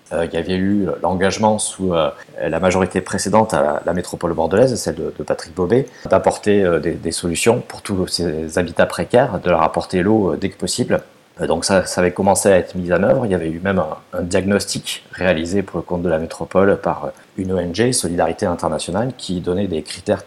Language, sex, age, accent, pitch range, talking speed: French, male, 30-49, French, 90-105 Hz, 190 wpm